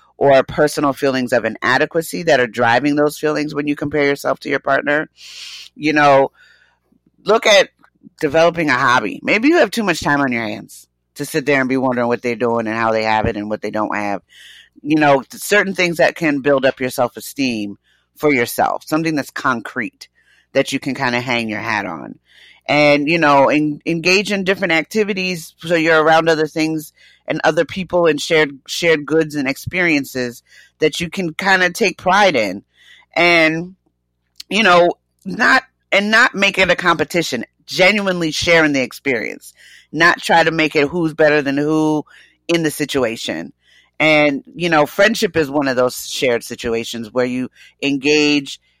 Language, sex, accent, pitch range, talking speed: English, female, American, 125-165 Hz, 180 wpm